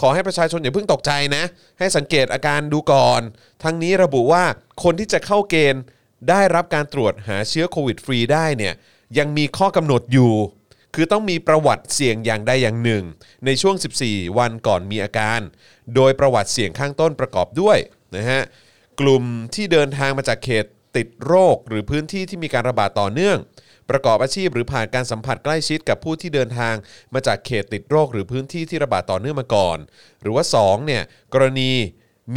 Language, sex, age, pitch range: Thai, male, 30-49, 110-150 Hz